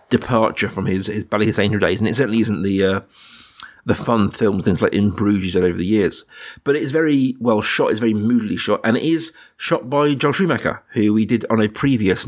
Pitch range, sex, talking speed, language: 105-130 Hz, male, 225 wpm, English